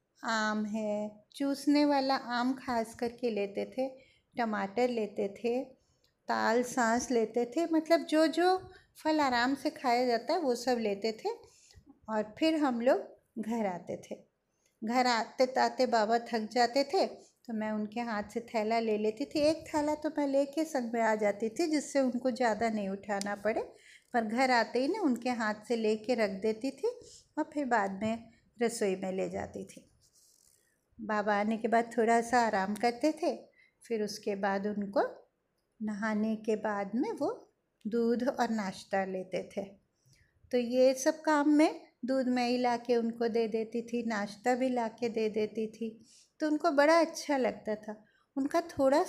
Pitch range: 220-285 Hz